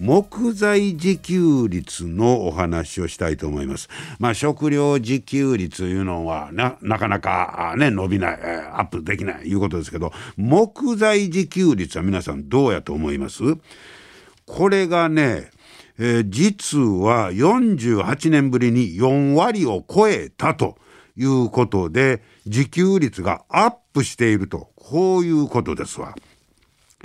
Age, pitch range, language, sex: 60-79, 105-170 Hz, Japanese, male